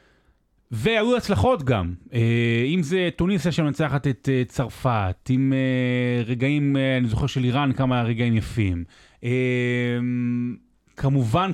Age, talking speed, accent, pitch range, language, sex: 30-49, 100 wpm, native, 110-140 Hz, Hebrew, male